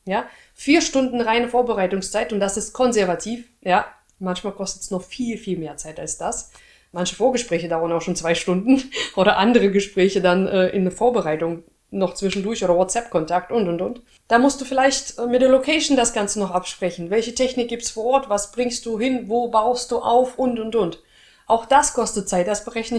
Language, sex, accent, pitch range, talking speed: German, female, German, 190-245 Hz, 200 wpm